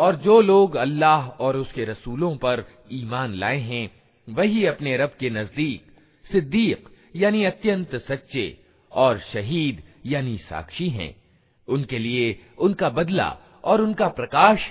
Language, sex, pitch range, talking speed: Hindi, male, 120-175 Hz, 130 wpm